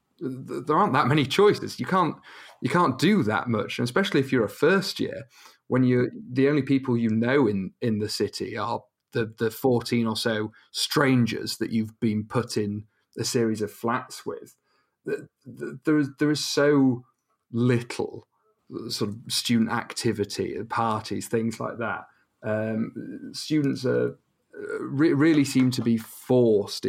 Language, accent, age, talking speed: English, British, 30-49, 155 wpm